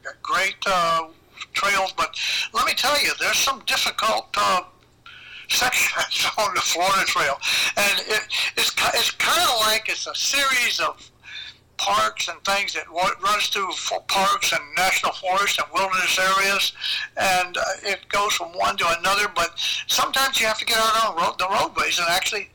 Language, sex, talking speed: English, male, 170 wpm